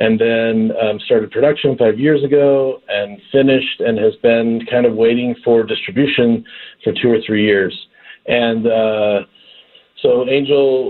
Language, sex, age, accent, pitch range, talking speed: English, male, 40-59, American, 110-135 Hz, 150 wpm